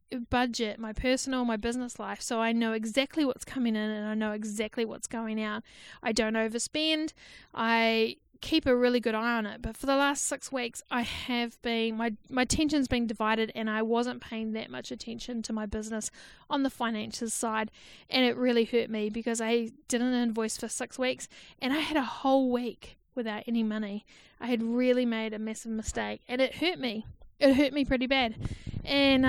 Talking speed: 200 wpm